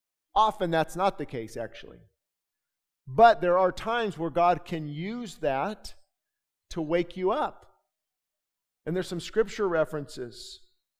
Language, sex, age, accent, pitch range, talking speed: English, male, 50-69, American, 150-195 Hz, 130 wpm